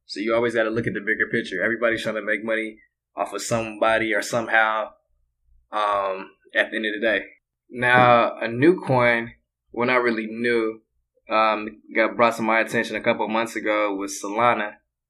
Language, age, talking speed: English, 20-39, 190 wpm